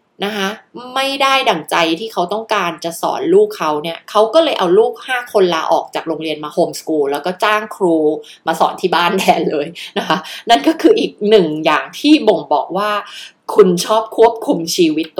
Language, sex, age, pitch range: Thai, female, 20-39, 165-220 Hz